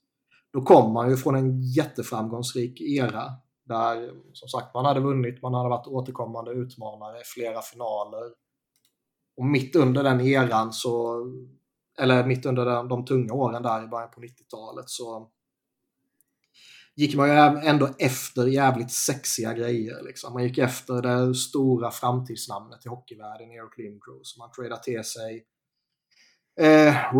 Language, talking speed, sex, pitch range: Swedish, 145 wpm, male, 115-130 Hz